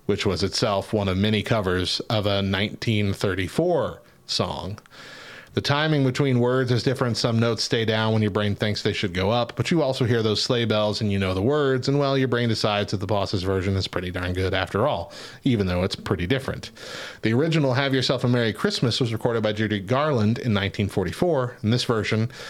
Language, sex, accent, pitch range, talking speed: English, male, American, 100-125 Hz, 210 wpm